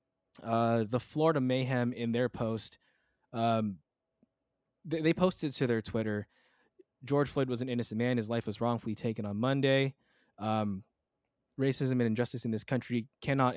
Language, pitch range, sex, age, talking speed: English, 115-135 Hz, male, 20-39, 155 wpm